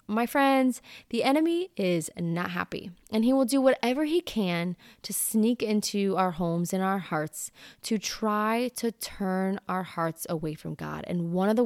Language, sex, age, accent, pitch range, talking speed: English, female, 20-39, American, 180-230 Hz, 180 wpm